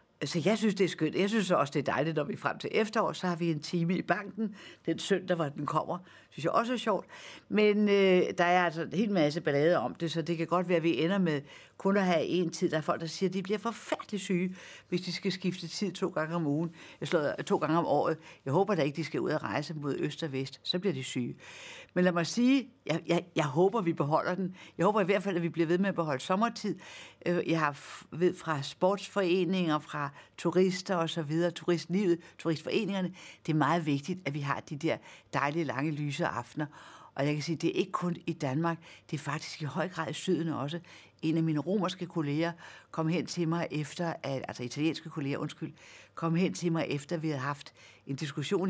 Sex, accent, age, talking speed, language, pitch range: female, native, 60-79, 240 wpm, Danish, 150-190 Hz